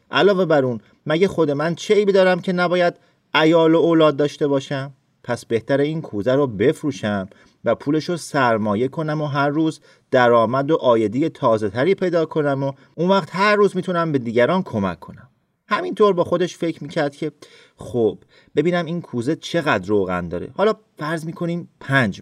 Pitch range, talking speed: 120-165 Hz, 165 wpm